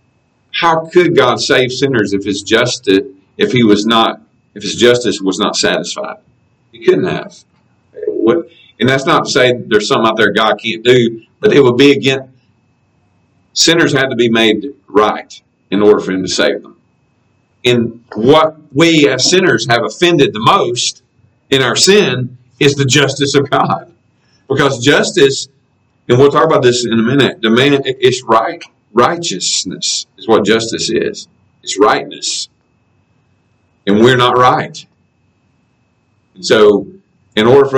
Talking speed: 155 wpm